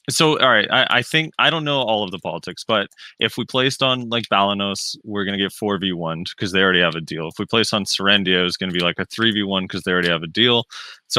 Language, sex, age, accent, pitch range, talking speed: English, male, 20-39, American, 95-115 Hz, 280 wpm